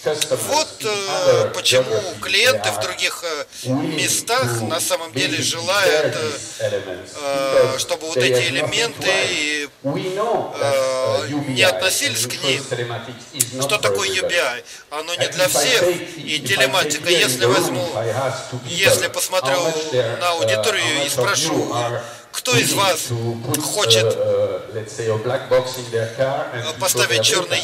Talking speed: 90 wpm